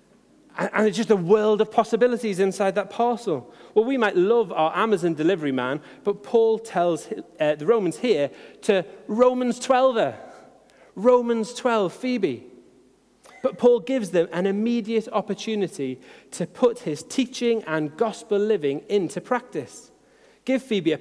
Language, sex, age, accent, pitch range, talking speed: English, male, 30-49, British, 200-255 Hz, 145 wpm